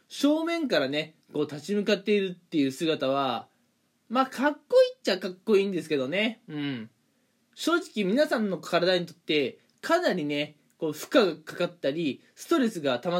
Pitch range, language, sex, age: 155-265 Hz, Japanese, male, 20-39